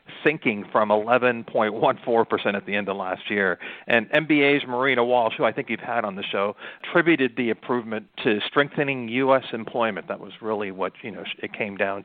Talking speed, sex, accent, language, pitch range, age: 190 wpm, male, American, English, 115-150 Hz, 50-69